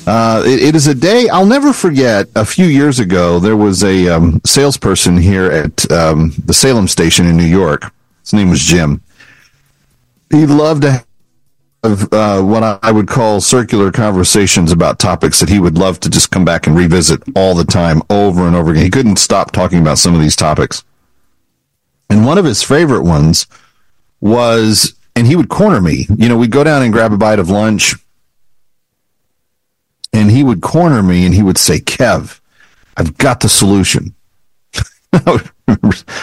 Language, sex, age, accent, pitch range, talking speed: English, male, 40-59, American, 85-120 Hz, 180 wpm